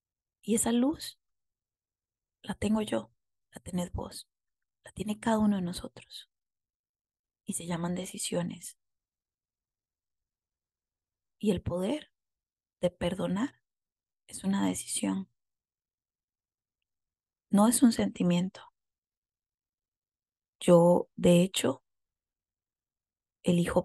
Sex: female